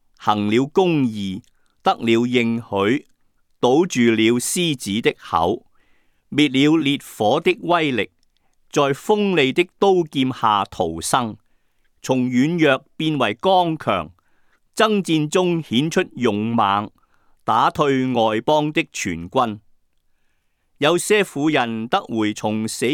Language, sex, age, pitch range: Chinese, male, 50-69, 105-155 Hz